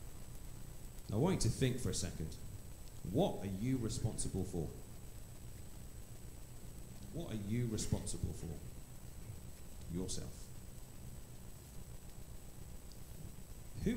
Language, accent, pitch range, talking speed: English, British, 95-135 Hz, 85 wpm